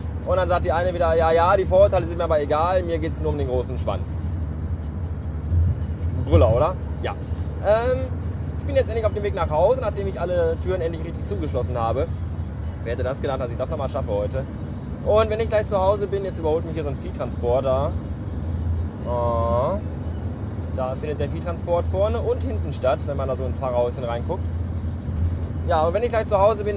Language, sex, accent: German, male, German